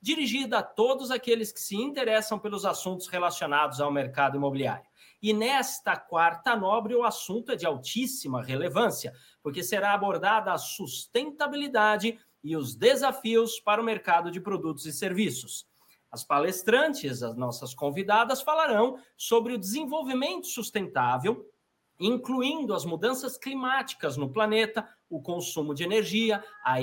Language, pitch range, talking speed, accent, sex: Portuguese, 170-240 Hz, 130 wpm, Brazilian, male